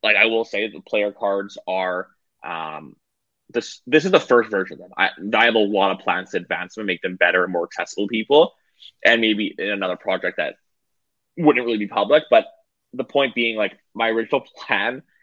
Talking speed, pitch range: 215 wpm, 100-120 Hz